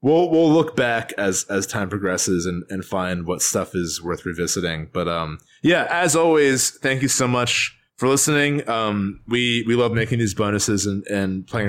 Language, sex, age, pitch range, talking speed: English, male, 20-39, 95-125 Hz, 190 wpm